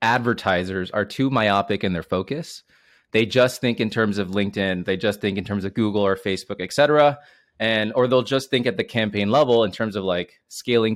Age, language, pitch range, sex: 20-39, English, 100-125 Hz, male